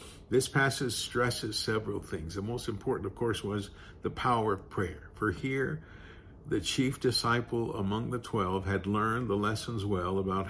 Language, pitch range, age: English, 95-115 Hz, 50-69